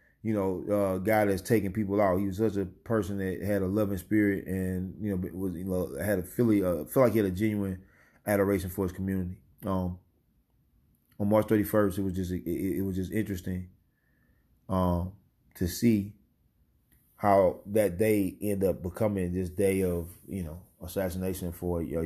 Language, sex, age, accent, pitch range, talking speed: English, male, 30-49, American, 90-110 Hz, 180 wpm